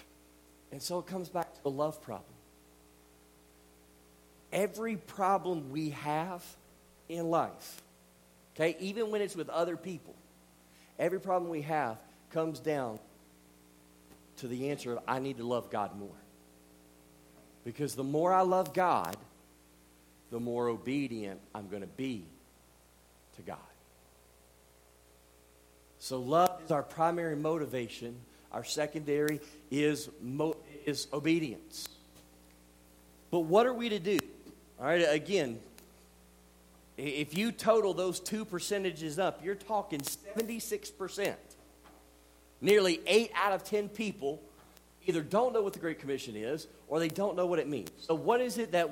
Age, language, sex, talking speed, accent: 50-69, English, male, 135 wpm, American